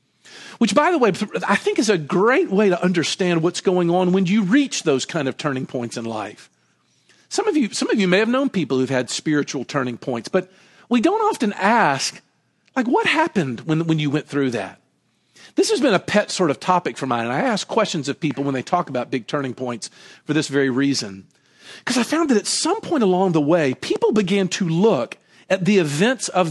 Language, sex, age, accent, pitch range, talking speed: English, male, 50-69, American, 160-245 Hz, 225 wpm